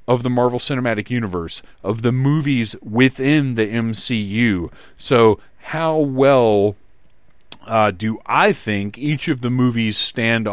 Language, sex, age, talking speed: English, male, 40-59, 130 wpm